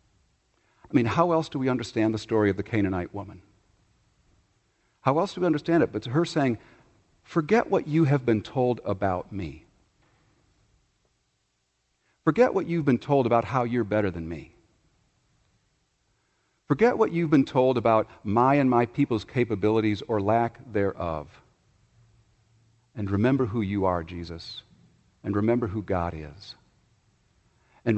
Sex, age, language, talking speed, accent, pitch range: male, 50-69, English, 145 wpm, American, 95-125 Hz